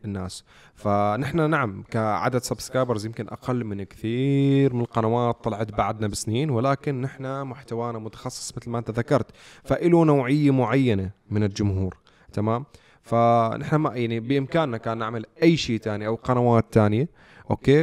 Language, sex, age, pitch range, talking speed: Arabic, male, 20-39, 105-130 Hz, 140 wpm